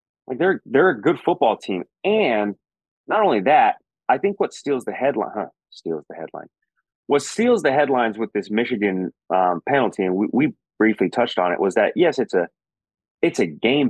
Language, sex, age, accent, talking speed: English, male, 30-49, American, 195 wpm